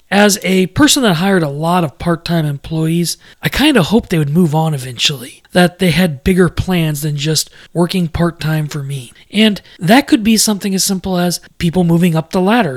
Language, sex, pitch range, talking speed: English, male, 150-190 Hz, 200 wpm